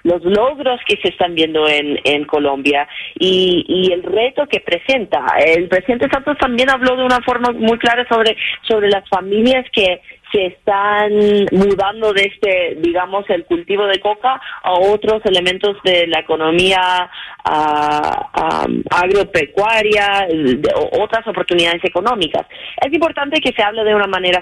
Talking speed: 150 wpm